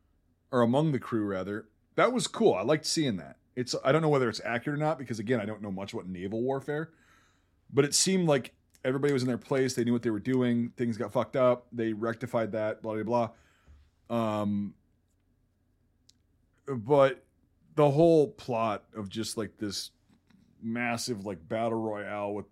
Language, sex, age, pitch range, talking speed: English, male, 30-49, 95-125 Hz, 185 wpm